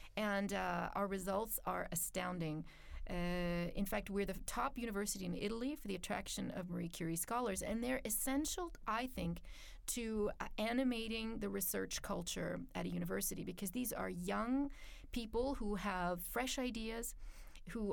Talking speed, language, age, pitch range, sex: 155 wpm, Russian, 30-49, 185-240 Hz, female